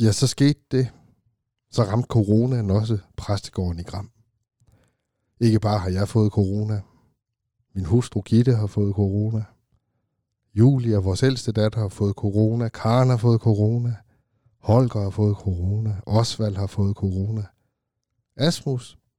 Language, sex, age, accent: Danish, male, 60-79, native